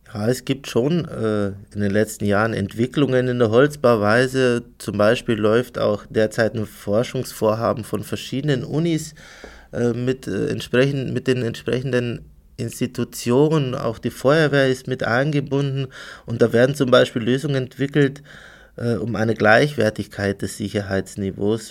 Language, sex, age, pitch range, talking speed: German, male, 20-39, 110-125 Hz, 135 wpm